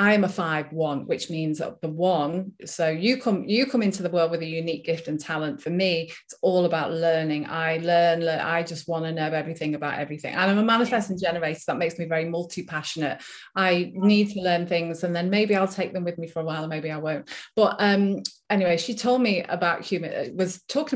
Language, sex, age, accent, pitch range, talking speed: English, female, 30-49, British, 160-195 Hz, 225 wpm